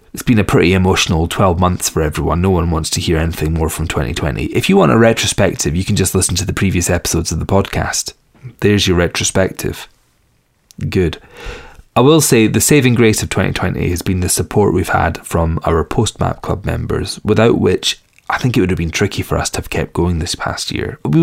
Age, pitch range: 30-49, 85-105 Hz